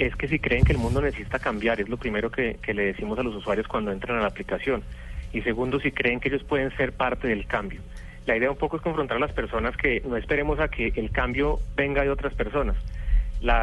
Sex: male